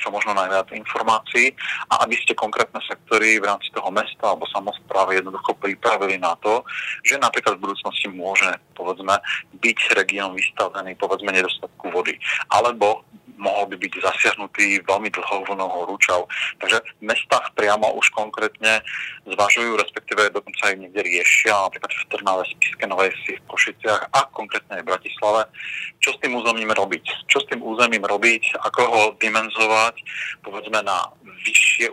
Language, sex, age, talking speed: Slovak, male, 30-49, 145 wpm